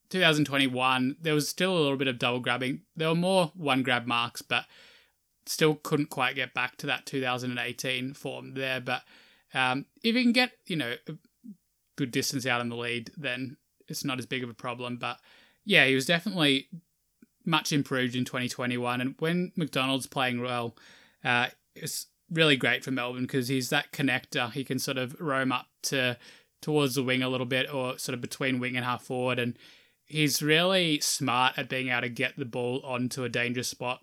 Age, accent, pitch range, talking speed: 20-39, Australian, 125-145 Hz, 195 wpm